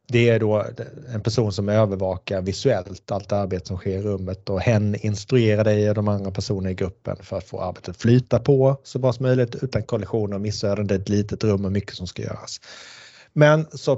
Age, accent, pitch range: 30-49, Norwegian, 95-120 Hz